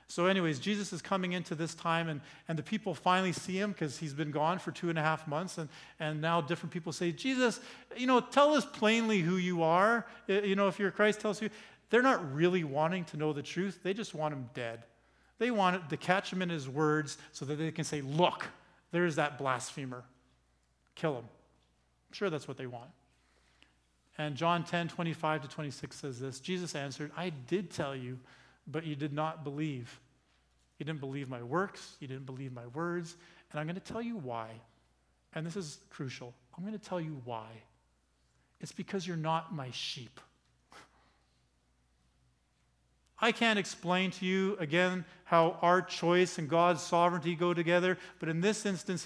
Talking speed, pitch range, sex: 195 wpm, 135-190 Hz, male